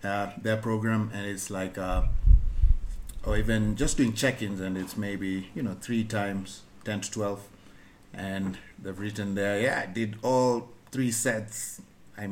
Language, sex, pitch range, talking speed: English, male, 100-130 Hz, 160 wpm